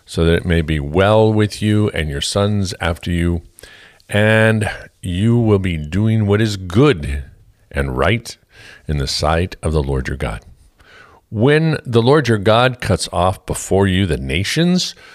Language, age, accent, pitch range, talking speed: English, 50-69, American, 85-115 Hz, 165 wpm